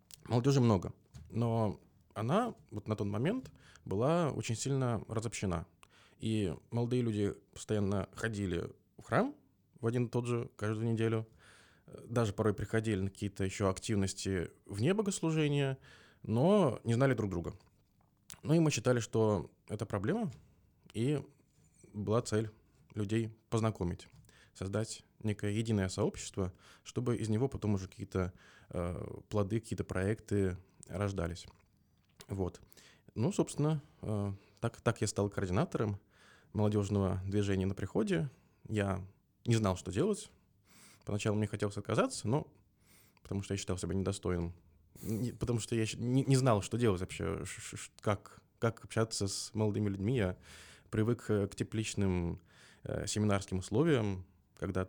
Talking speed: 125 wpm